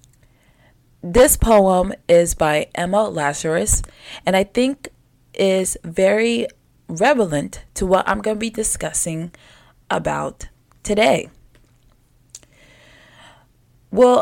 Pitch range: 155-210 Hz